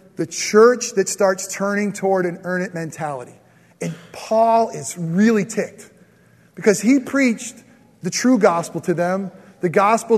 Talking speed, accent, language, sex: 145 wpm, American, English, male